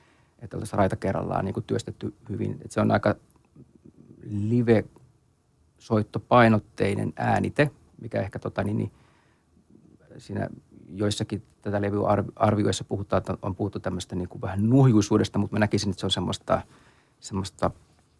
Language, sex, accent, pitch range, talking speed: Finnish, male, native, 95-115 Hz, 120 wpm